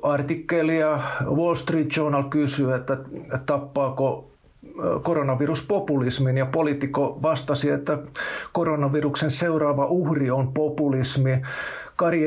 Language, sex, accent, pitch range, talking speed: Finnish, male, native, 130-155 Hz, 90 wpm